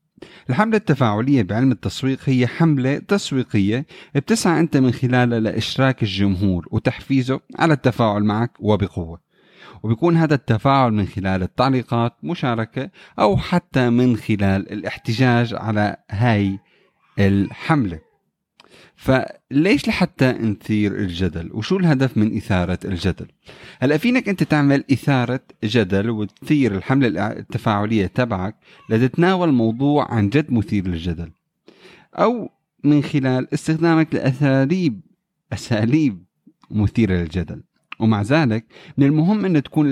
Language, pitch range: Arabic, 105-145 Hz